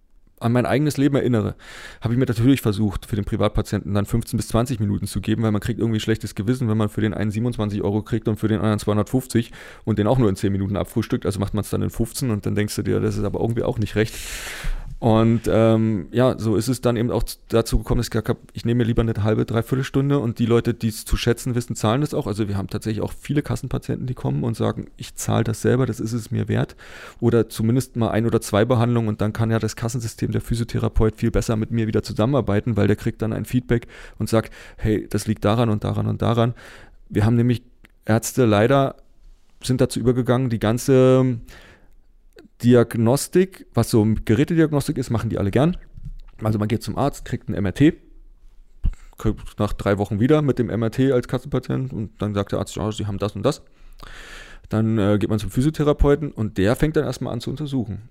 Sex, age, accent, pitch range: male, 30-49, German, 105-125 Hz